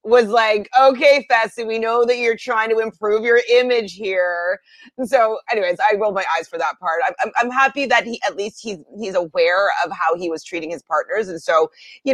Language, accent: English, American